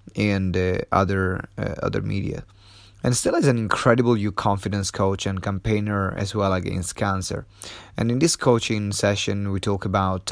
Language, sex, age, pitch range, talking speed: English, male, 30-49, 95-115 Hz, 155 wpm